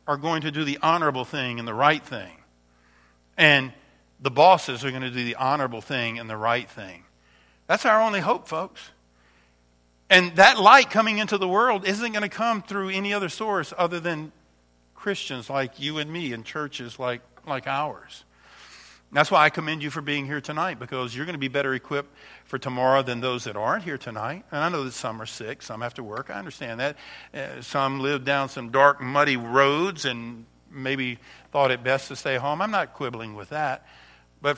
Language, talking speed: English, 205 wpm